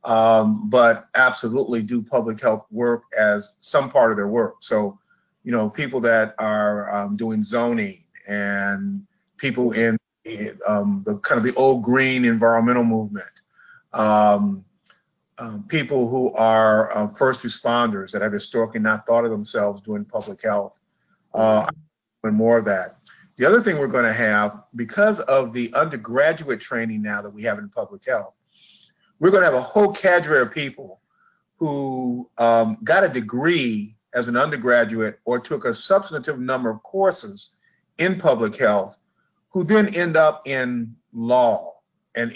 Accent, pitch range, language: American, 110-145 Hz, English